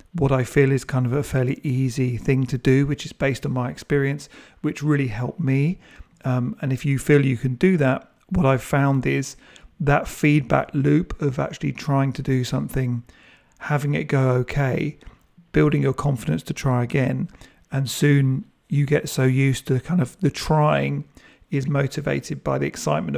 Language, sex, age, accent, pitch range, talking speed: English, male, 40-59, British, 130-150 Hz, 180 wpm